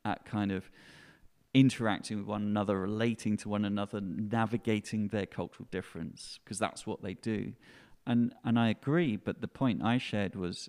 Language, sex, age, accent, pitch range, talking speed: English, male, 30-49, British, 100-115 Hz, 170 wpm